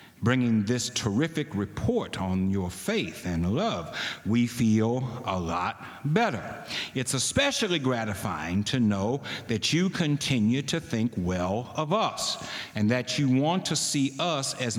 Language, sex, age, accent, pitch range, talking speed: English, male, 60-79, American, 100-145 Hz, 140 wpm